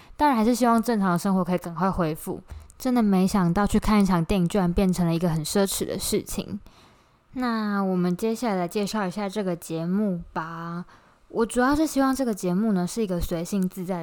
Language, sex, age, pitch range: Chinese, female, 20-39, 170-215 Hz